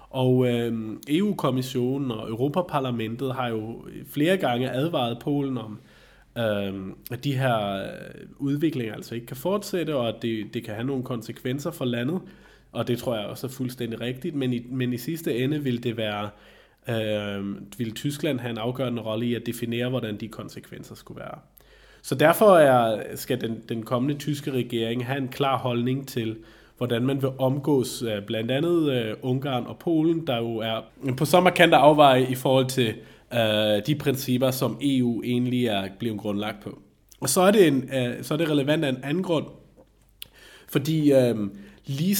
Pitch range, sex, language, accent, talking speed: 115-140 Hz, male, Danish, native, 170 wpm